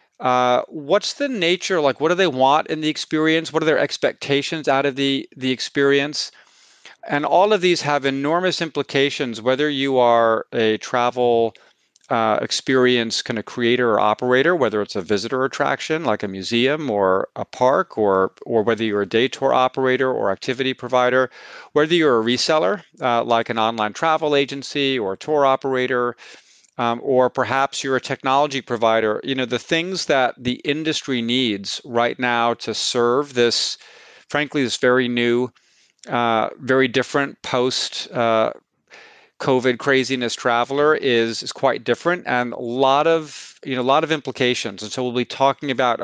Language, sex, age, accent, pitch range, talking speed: English, male, 40-59, American, 115-140 Hz, 165 wpm